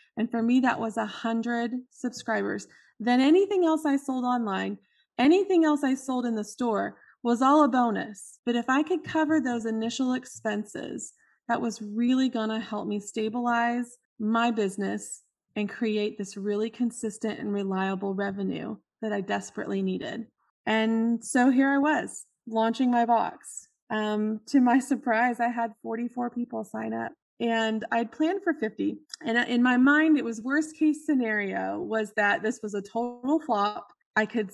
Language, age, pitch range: English, 20-39, 215-255 Hz